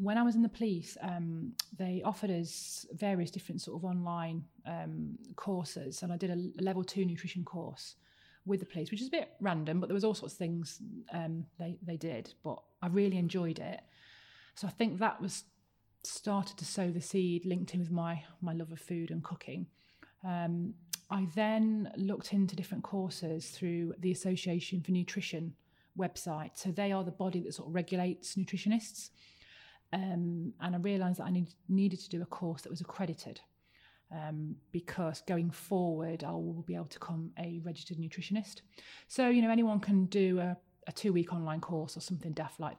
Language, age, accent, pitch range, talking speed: English, 30-49, British, 165-190 Hz, 190 wpm